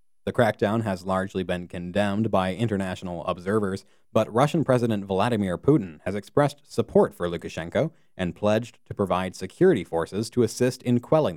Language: English